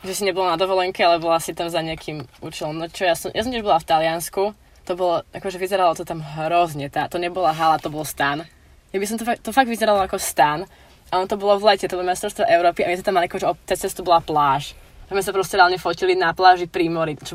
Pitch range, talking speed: 160-185 Hz, 265 wpm